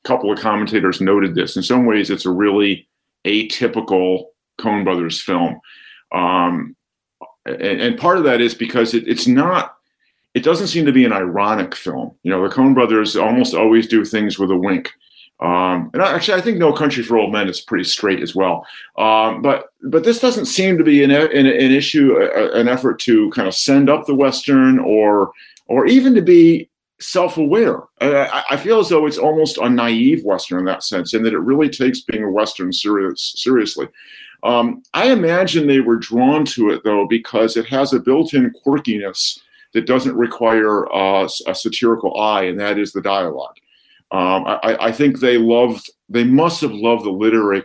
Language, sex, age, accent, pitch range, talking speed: English, male, 50-69, American, 100-150 Hz, 190 wpm